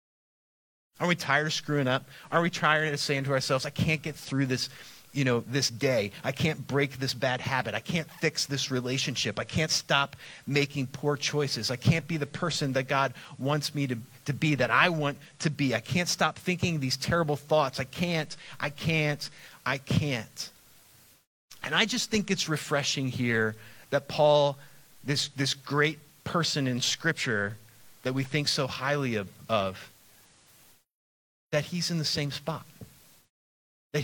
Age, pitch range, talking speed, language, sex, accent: 30-49, 125-155 Hz, 175 wpm, English, male, American